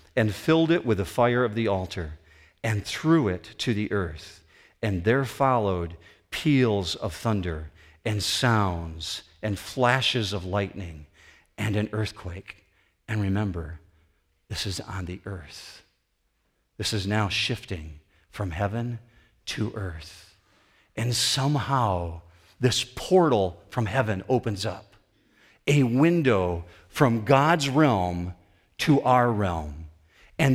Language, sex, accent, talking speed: English, male, American, 120 wpm